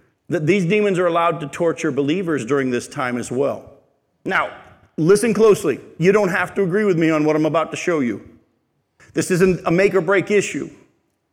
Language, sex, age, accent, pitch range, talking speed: English, male, 50-69, American, 140-195 Hz, 195 wpm